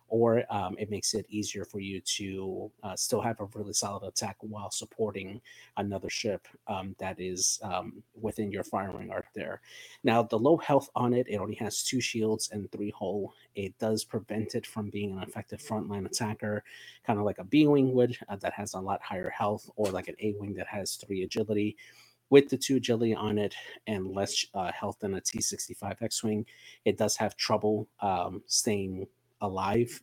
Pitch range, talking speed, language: 95-110 Hz, 190 wpm, English